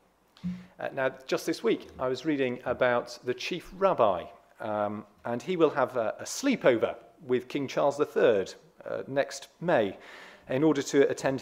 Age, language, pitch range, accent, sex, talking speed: 40-59, English, 120-165 Hz, British, male, 165 wpm